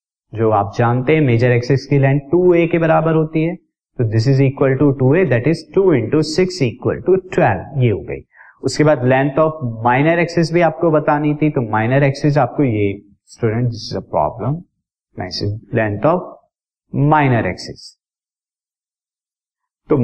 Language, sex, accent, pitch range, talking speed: Hindi, male, native, 120-155 Hz, 165 wpm